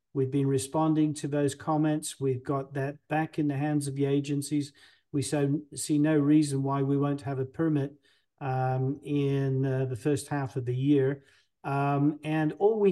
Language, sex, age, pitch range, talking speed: English, male, 40-59, 135-150 Hz, 180 wpm